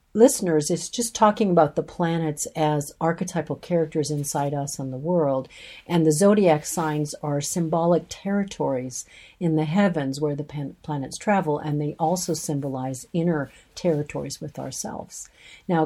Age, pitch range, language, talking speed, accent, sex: 50-69, 145-175 Hz, English, 145 wpm, American, female